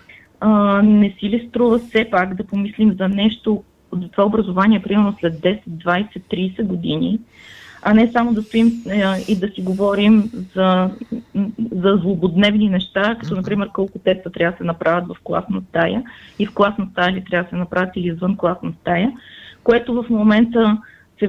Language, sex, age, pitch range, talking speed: Bulgarian, female, 20-39, 185-230 Hz, 165 wpm